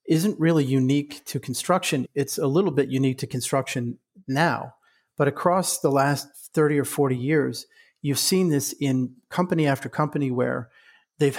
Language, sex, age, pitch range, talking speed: English, male, 40-59, 130-150 Hz, 160 wpm